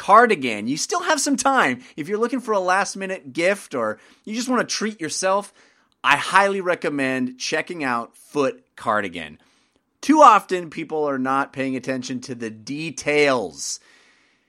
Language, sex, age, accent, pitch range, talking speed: English, male, 30-49, American, 140-220 Hz, 155 wpm